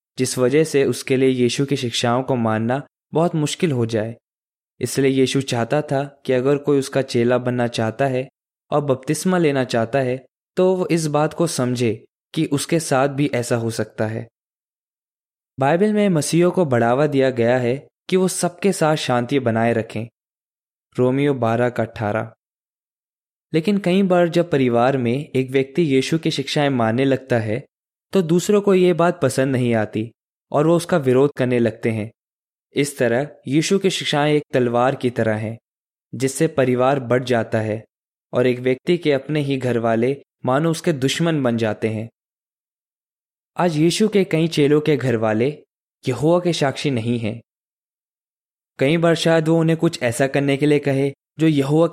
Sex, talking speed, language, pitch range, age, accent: male, 170 wpm, Hindi, 120-155 Hz, 20-39, native